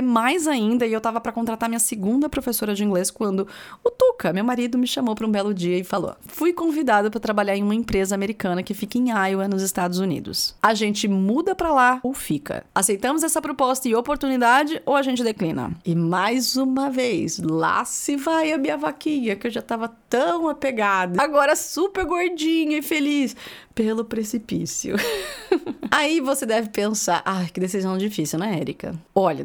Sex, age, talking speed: female, 30-49, 185 wpm